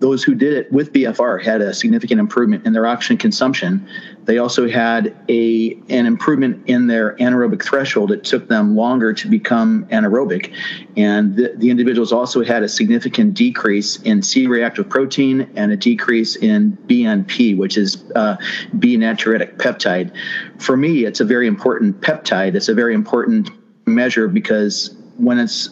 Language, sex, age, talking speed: English, male, 40-59, 160 wpm